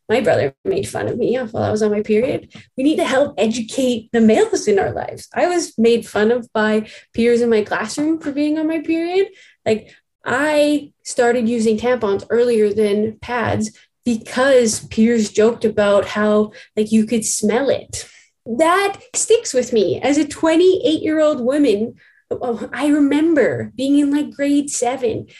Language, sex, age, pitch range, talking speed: English, female, 20-39, 215-285 Hz, 165 wpm